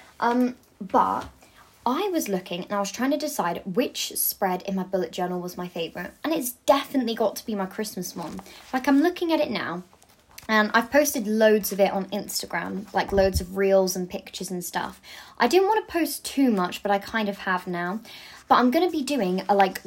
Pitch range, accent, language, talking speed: 190-230 Hz, British, English, 215 wpm